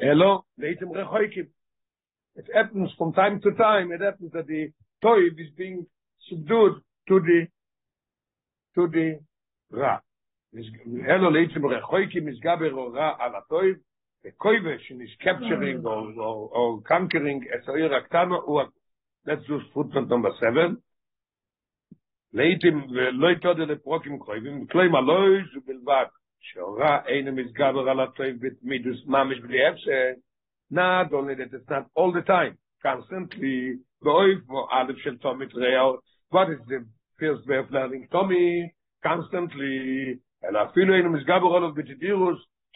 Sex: male